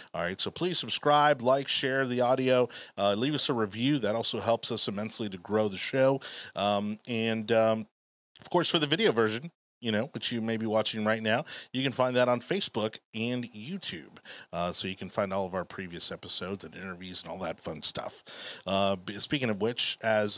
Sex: male